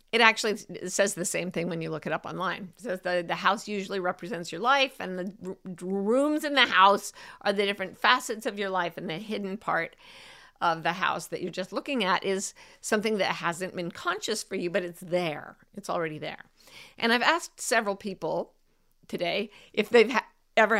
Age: 50-69